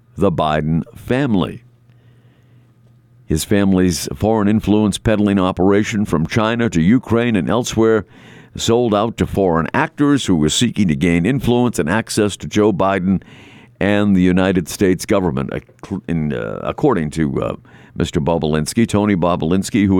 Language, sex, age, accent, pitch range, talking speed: English, male, 50-69, American, 90-120 Hz, 140 wpm